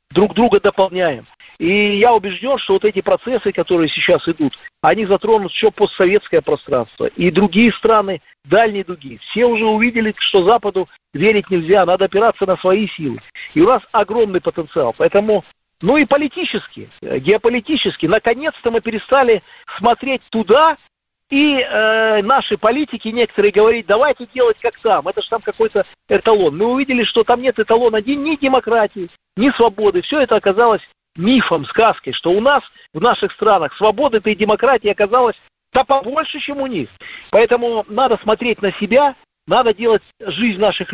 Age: 50-69